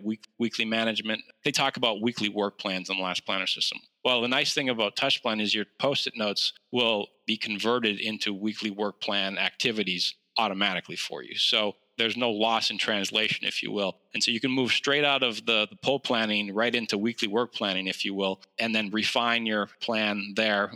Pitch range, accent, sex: 105-120 Hz, American, male